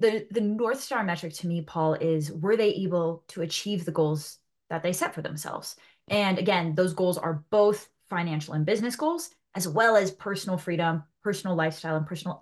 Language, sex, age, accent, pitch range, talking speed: English, female, 20-39, American, 165-210 Hz, 195 wpm